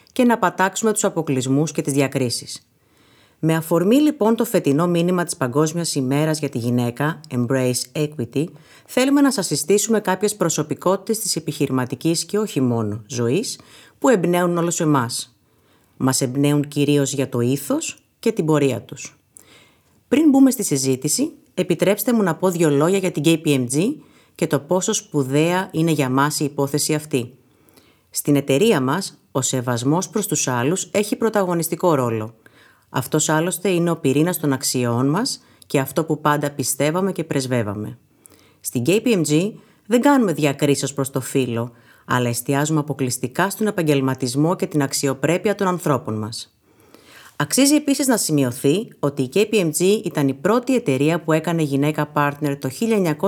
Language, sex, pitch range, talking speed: Greek, female, 135-185 Hz, 150 wpm